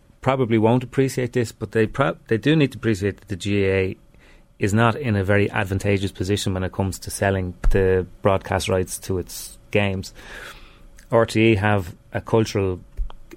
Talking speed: 165 wpm